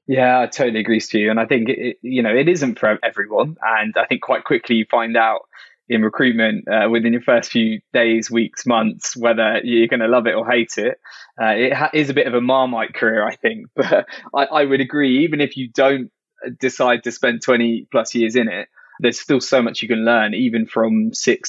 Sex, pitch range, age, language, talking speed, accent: male, 115-135 Hz, 20-39, English, 230 wpm, British